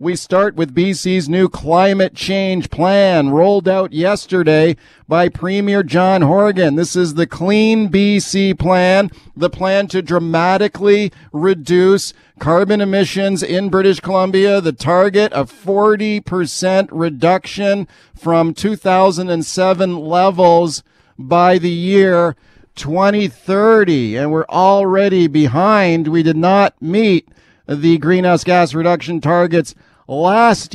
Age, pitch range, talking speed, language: 50-69, 170-195 Hz, 110 wpm, English